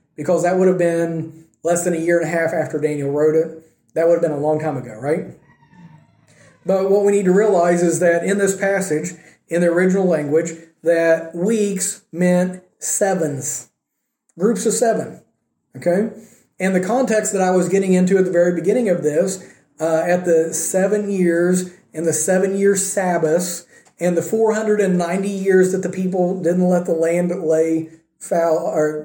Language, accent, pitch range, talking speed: English, American, 160-190 Hz, 175 wpm